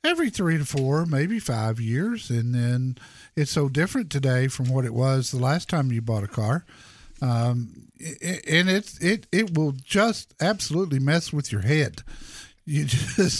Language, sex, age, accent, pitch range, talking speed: English, male, 50-69, American, 130-170 Hz, 160 wpm